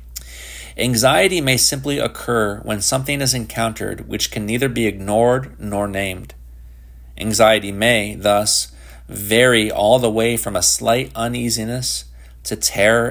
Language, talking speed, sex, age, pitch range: English, 130 wpm, male, 40-59, 95-120 Hz